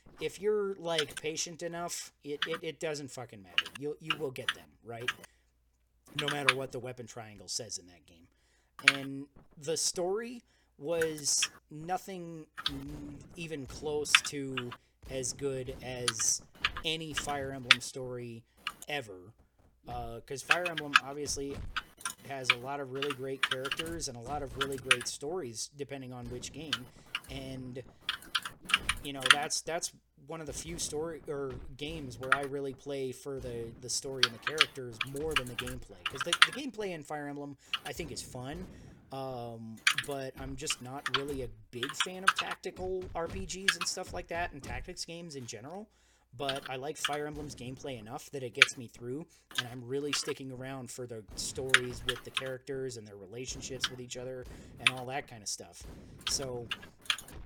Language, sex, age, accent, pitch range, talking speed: English, male, 30-49, American, 125-150 Hz, 170 wpm